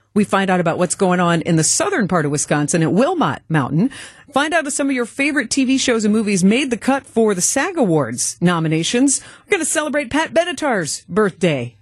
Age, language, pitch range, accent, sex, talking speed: 40-59, English, 165-240 Hz, American, female, 215 wpm